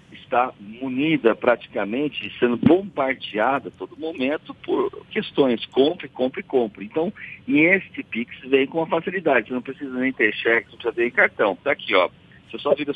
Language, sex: Portuguese, male